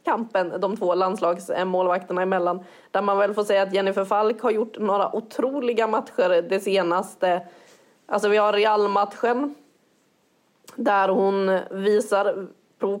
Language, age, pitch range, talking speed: English, 30-49, 190-225 Hz, 130 wpm